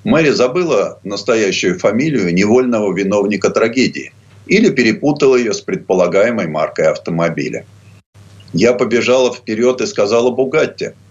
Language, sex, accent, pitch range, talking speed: Russian, male, native, 100-135 Hz, 110 wpm